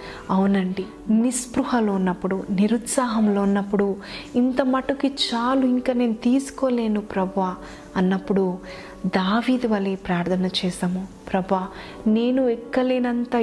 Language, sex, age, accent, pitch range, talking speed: Telugu, female, 30-49, native, 195-240 Hz, 90 wpm